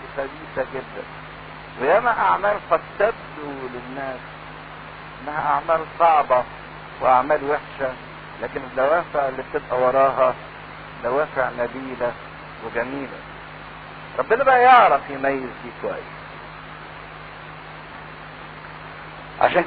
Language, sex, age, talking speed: English, male, 50-69, 80 wpm